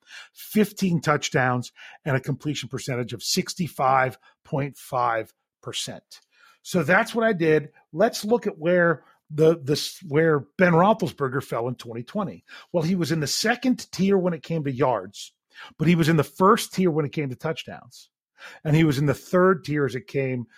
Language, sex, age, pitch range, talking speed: English, male, 40-59, 140-195 Hz, 175 wpm